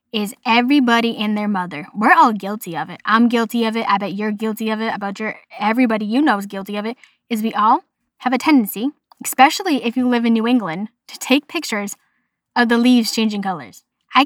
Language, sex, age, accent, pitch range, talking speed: English, female, 10-29, American, 205-250 Hz, 215 wpm